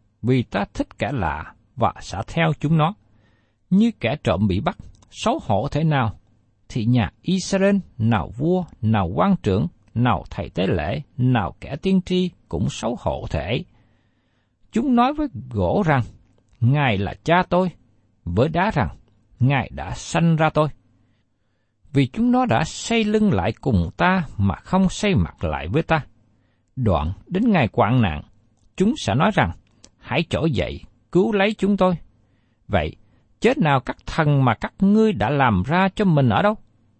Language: Vietnamese